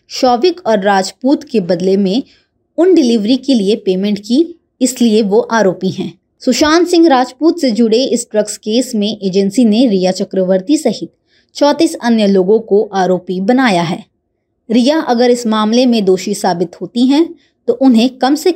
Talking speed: 160 wpm